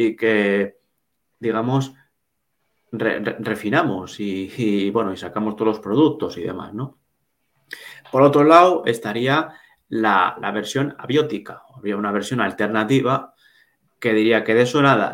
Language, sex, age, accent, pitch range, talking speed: Spanish, male, 30-49, Spanish, 110-140 Hz, 130 wpm